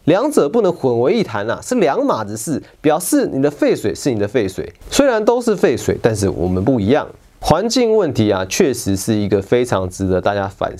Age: 30-49